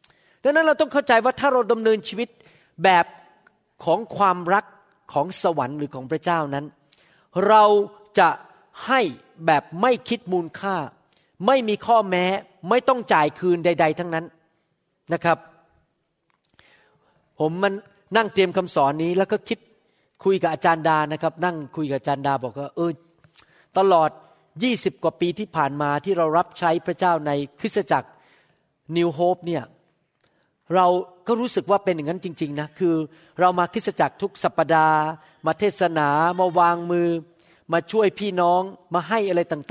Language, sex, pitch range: Thai, male, 160-195 Hz